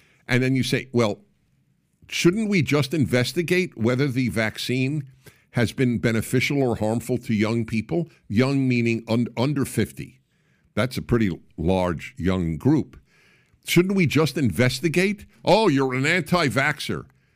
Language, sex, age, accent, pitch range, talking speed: English, male, 50-69, American, 115-155 Hz, 130 wpm